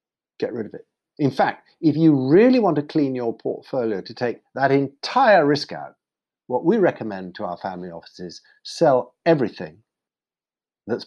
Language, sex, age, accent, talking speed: English, male, 60-79, British, 170 wpm